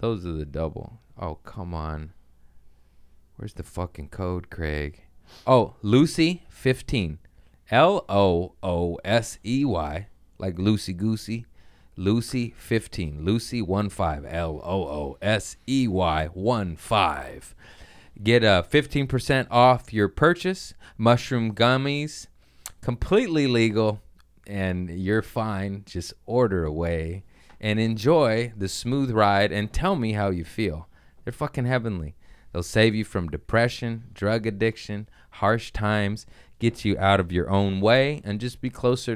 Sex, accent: male, American